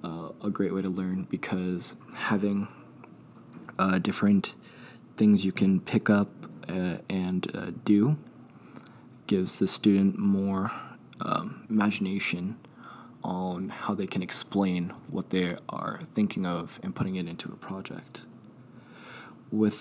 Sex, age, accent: male, 20-39, American